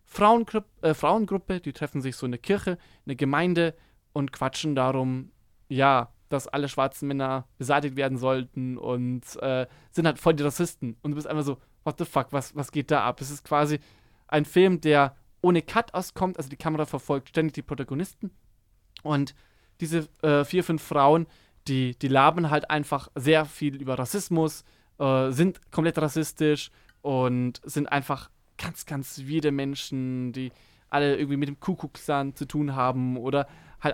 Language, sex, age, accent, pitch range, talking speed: German, male, 20-39, German, 130-155 Hz, 170 wpm